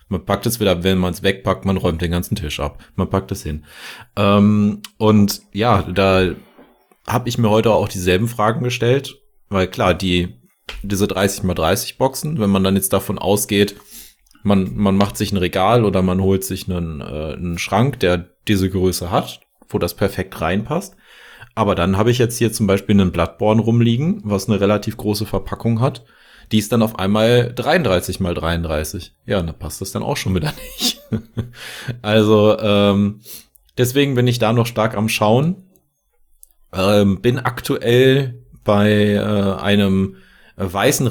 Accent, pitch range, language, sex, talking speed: German, 95-115 Hz, German, male, 170 wpm